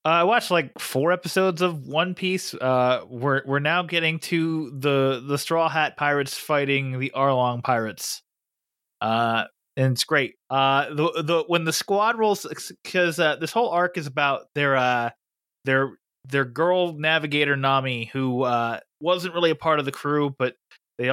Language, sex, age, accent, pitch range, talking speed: English, male, 20-39, American, 125-155 Hz, 170 wpm